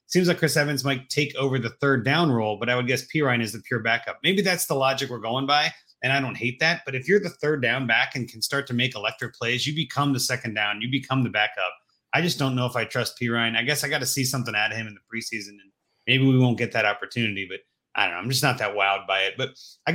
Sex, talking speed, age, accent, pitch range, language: male, 290 wpm, 30-49, American, 120-150 Hz, English